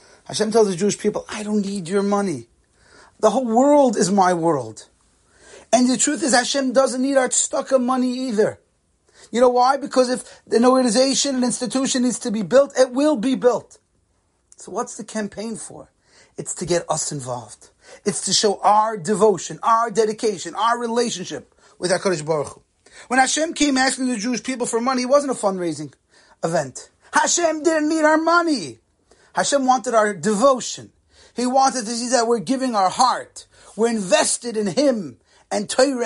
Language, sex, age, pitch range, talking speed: English, male, 30-49, 190-255 Hz, 175 wpm